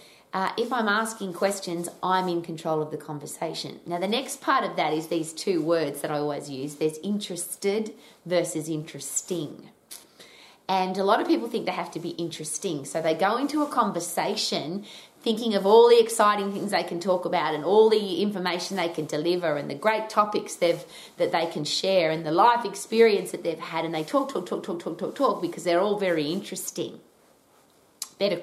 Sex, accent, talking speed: female, Australian, 205 wpm